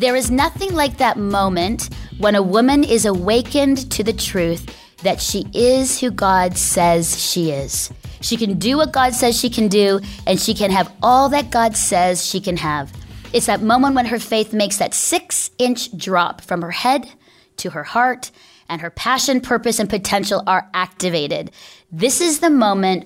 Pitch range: 185-250 Hz